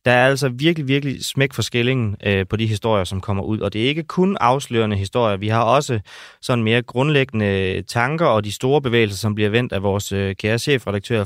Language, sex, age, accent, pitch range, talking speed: Danish, male, 30-49, native, 100-130 Hz, 205 wpm